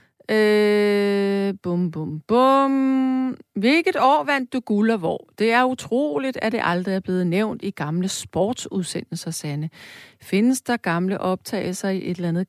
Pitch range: 185-255 Hz